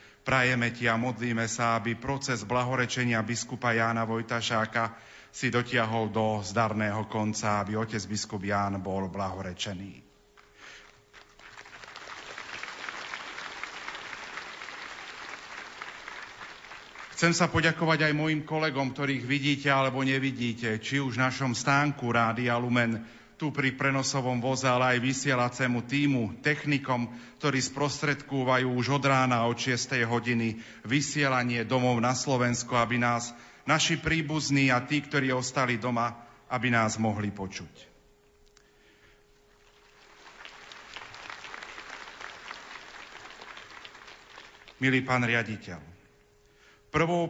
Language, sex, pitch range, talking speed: Slovak, male, 115-140 Hz, 100 wpm